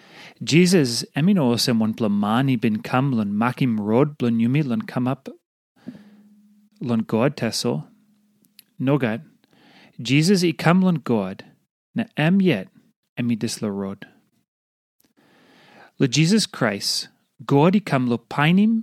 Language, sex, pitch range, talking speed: English, male, 120-180 Hz, 105 wpm